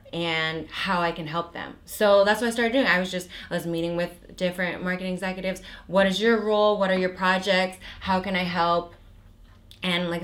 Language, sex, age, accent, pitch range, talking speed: English, female, 20-39, American, 170-205 Hz, 210 wpm